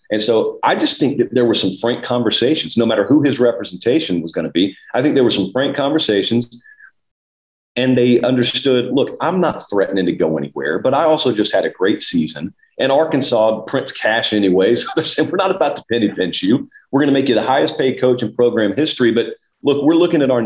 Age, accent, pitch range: 40-59, American, 115-145 Hz